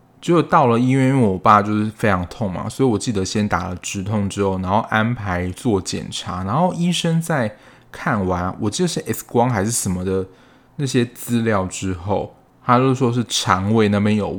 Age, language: 20-39, Chinese